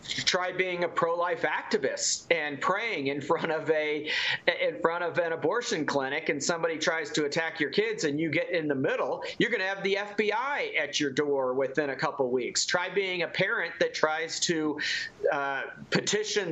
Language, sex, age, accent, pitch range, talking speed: English, male, 40-59, American, 165-250 Hz, 190 wpm